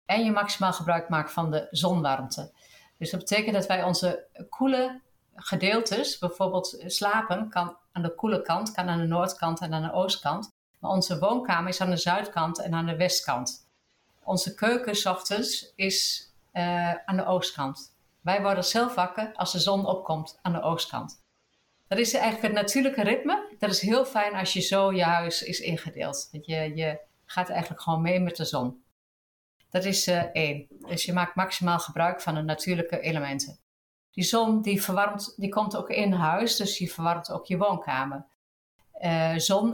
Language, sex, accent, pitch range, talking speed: Dutch, female, Dutch, 165-200 Hz, 175 wpm